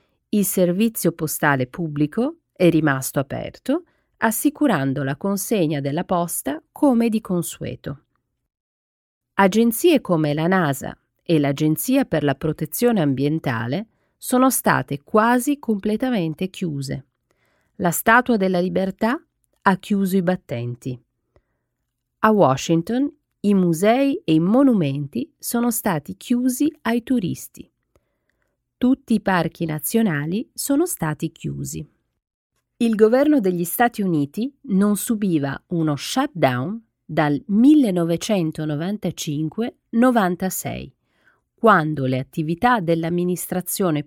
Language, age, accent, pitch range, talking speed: Italian, 40-59, native, 150-230 Hz, 100 wpm